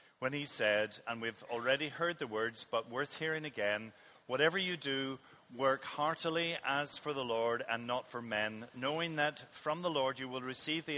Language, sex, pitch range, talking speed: English, male, 120-150 Hz, 190 wpm